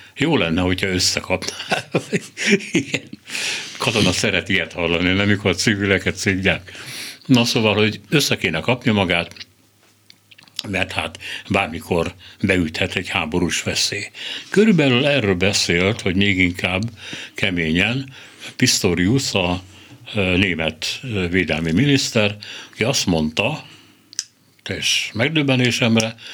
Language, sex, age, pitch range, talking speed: Hungarian, male, 60-79, 90-115 Hz, 100 wpm